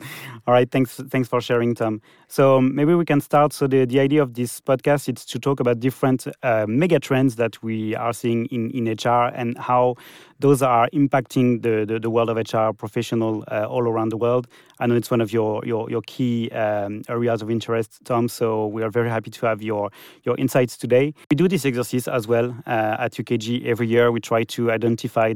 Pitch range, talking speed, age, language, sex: 115-130 Hz, 220 wpm, 30-49, English, male